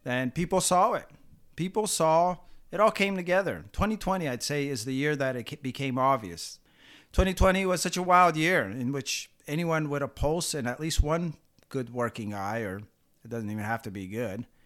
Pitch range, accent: 130-185 Hz, American